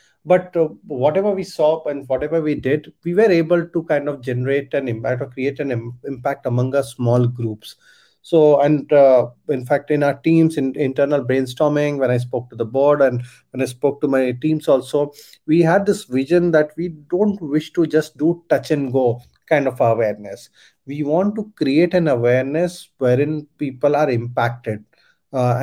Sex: male